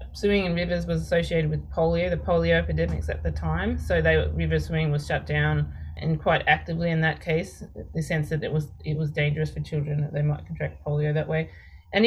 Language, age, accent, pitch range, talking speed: English, 20-39, Australian, 150-175 Hz, 220 wpm